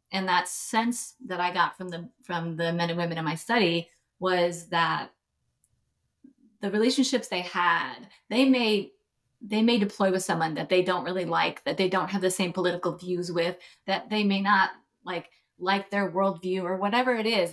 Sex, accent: female, American